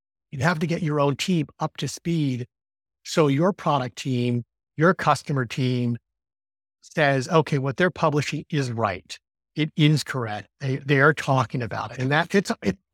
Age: 50-69